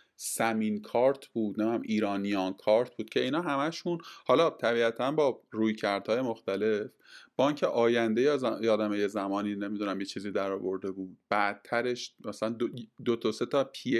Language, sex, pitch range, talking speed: Persian, male, 110-140 Hz, 160 wpm